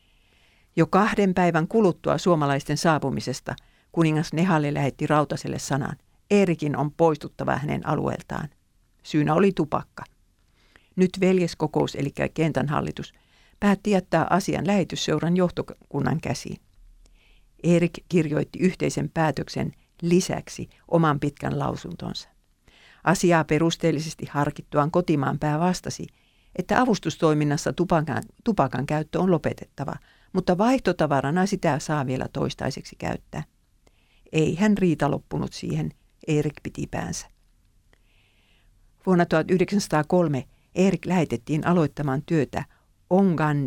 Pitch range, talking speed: 140-180 Hz, 100 wpm